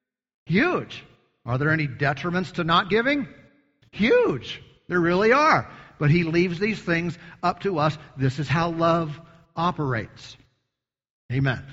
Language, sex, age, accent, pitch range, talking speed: English, male, 50-69, American, 130-180 Hz, 135 wpm